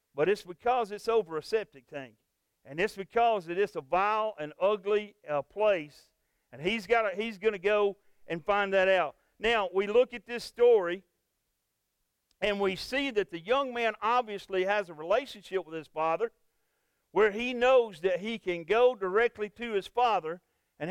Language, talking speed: English, 170 wpm